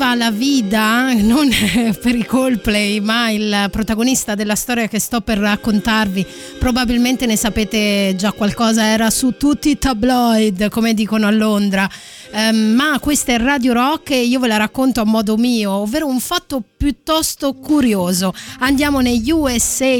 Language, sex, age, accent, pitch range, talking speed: Italian, female, 30-49, native, 215-270 Hz, 145 wpm